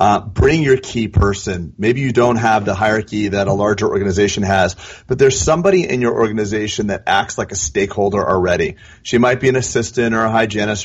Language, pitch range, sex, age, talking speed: English, 105-120 Hz, male, 30-49, 200 wpm